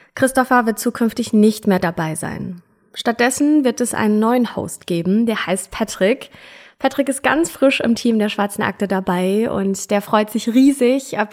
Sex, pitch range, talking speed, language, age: female, 185-240 Hz, 175 wpm, German, 20-39